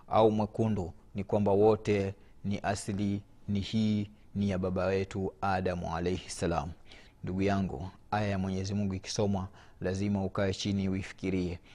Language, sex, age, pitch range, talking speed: Swahili, male, 30-49, 95-110 Hz, 140 wpm